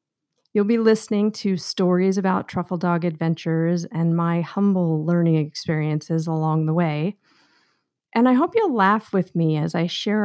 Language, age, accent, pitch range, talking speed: English, 40-59, American, 170-220 Hz, 160 wpm